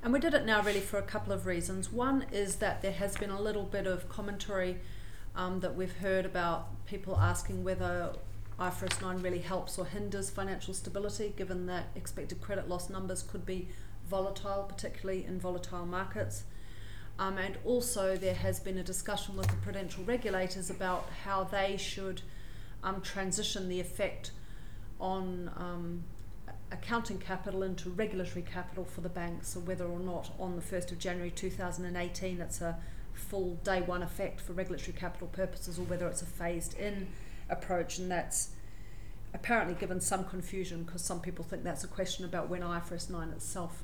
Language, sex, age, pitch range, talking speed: English, female, 40-59, 160-190 Hz, 170 wpm